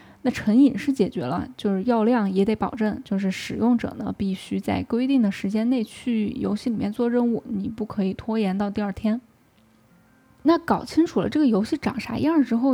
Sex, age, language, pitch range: female, 10-29, Chinese, 200-250 Hz